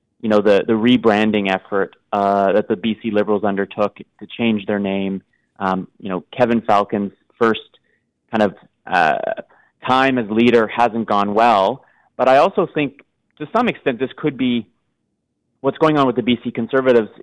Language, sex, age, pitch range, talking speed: English, male, 30-49, 100-120 Hz, 165 wpm